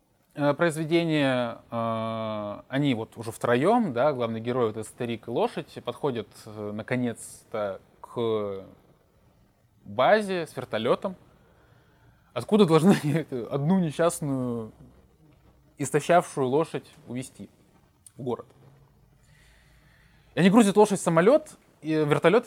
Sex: male